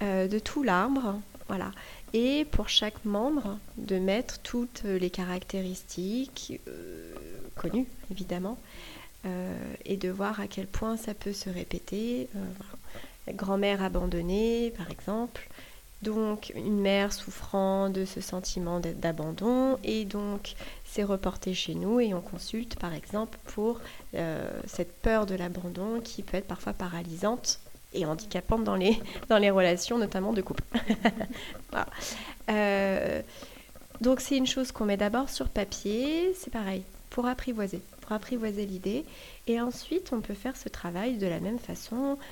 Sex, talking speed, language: female, 140 wpm, French